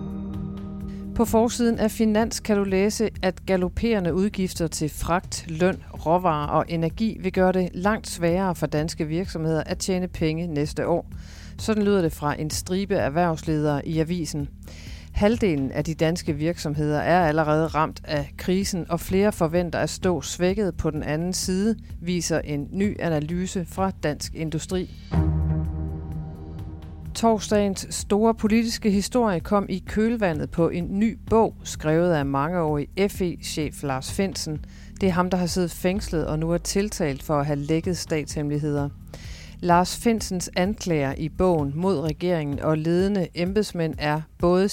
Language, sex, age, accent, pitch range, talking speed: Danish, female, 40-59, native, 150-190 Hz, 150 wpm